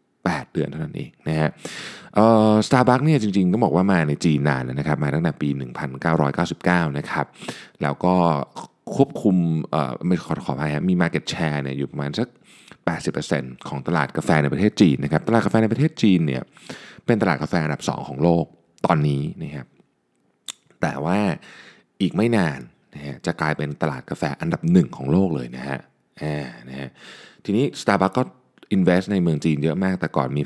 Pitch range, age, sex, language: 75-95 Hz, 20-39, male, Thai